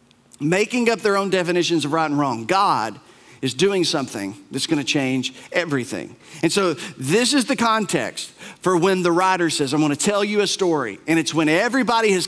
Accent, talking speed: American, 190 wpm